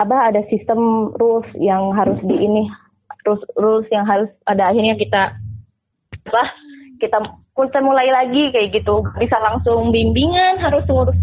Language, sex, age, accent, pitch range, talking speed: Indonesian, female, 20-39, native, 190-240 Hz, 140 wpm